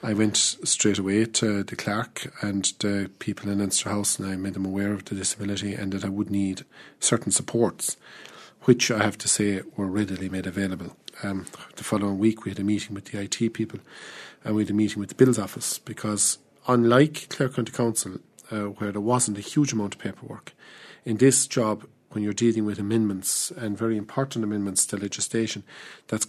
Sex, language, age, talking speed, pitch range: male, English, 40-59, 200 wpm, 100-115 Hz